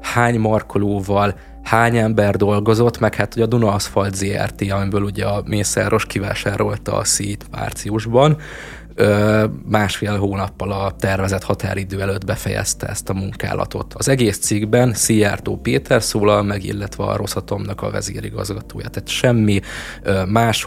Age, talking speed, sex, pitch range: 20-39, 130 wpm, male, 100-110 Hz